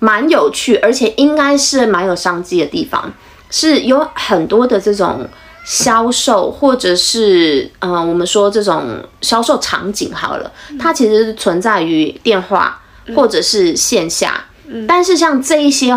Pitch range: 185-275 Hz